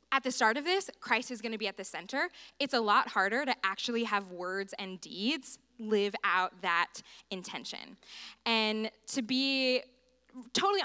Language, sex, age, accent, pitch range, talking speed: English, female, 10-29, American, 195-250 Hz, 170 wpm